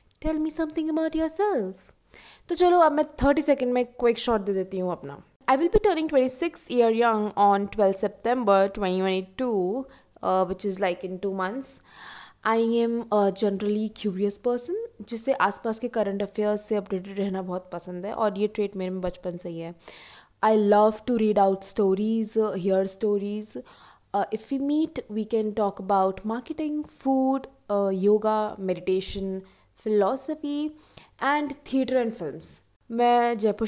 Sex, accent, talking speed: female, native, 160 wpm